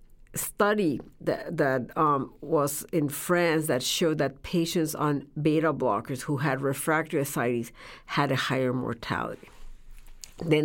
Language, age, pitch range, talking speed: English, 60-79, 140-170 Hz, 130 wpm